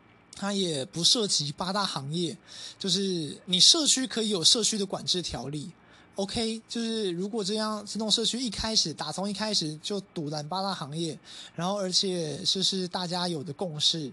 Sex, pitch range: male, 165-210 Hz